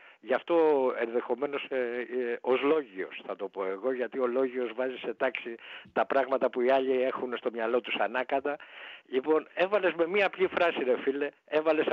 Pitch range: 125-160 Hz